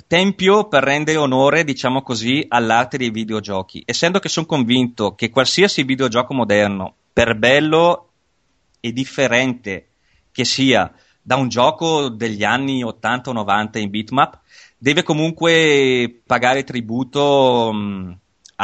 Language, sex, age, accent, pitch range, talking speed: Italian, male, 30-49, native, 110-145 Hz, 120 wpm